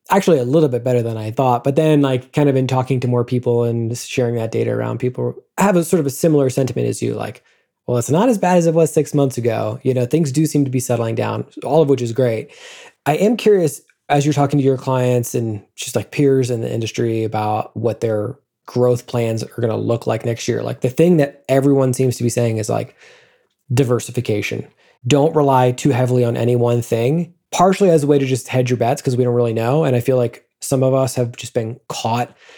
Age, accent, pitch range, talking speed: 20-39, American, 120-145 Hz, 245 wpm